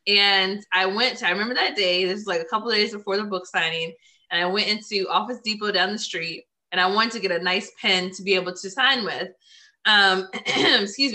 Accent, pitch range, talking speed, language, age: American, 185-240 Hz, 235 wpm, English, 20-39